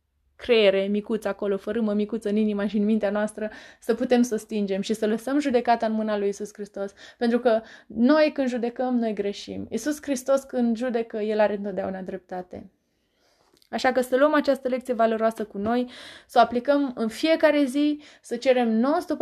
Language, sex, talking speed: Romanian, female, 180 wpm